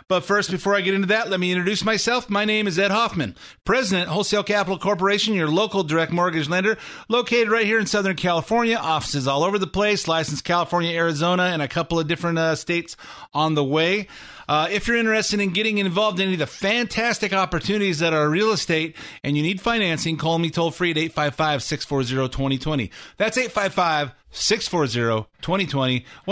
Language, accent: English, American